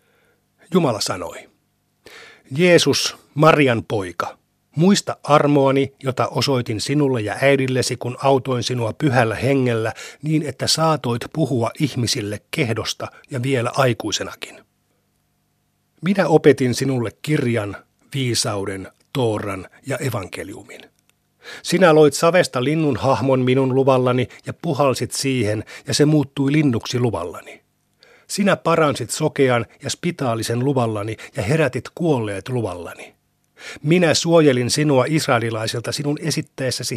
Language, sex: Finnish, male